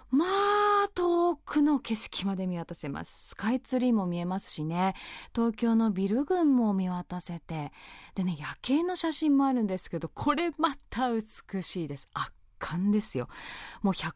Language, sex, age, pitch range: Japanese, female, 20-39, 180-280 Hz